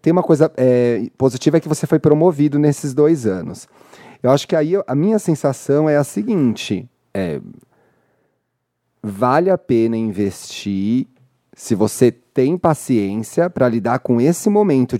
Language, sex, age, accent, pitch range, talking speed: Portuguese, male, 30-49, Brazilian, 115-150 Hz, 140 wpm